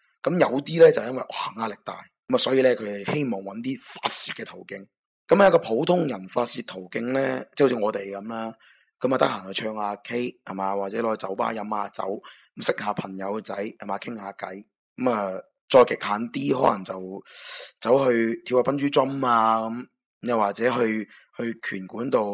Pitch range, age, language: 105-130 Hz, 20-39, Chinese